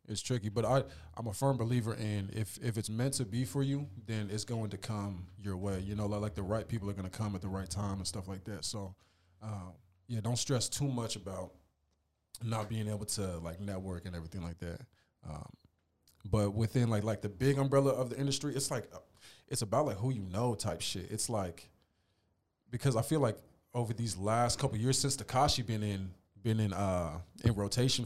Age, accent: 20-39, American